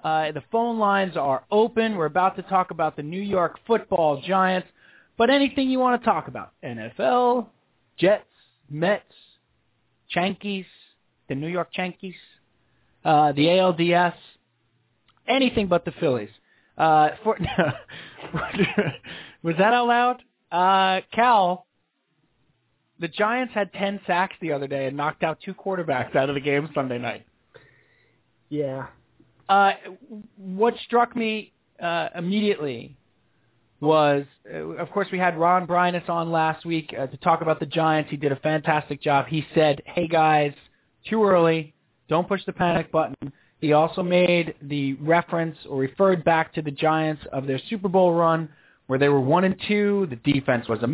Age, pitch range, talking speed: 30-49, 150-195 Hz, 155 wpm